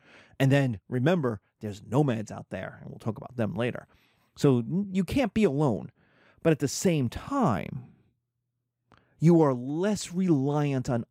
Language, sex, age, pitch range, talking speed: English, male, 30-49, 120-190 Hz, 150 wpm